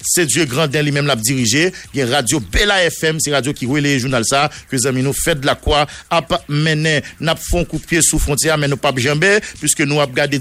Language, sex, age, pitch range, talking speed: English, male, 50-69, 140-165 Hz, 225 wpm